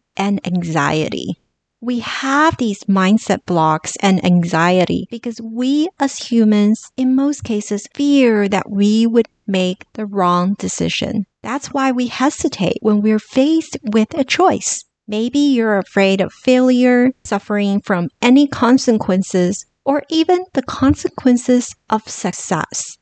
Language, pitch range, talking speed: English, 195-265 Hz, 130 wpm